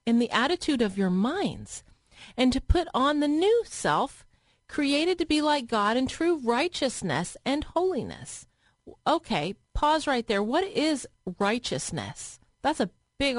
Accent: American